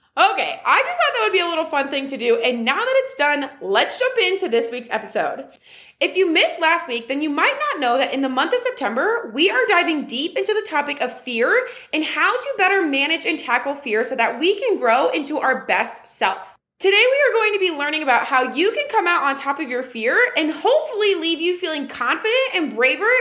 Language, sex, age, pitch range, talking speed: English, female, 20-39, 250-400 Hz, 240 wpm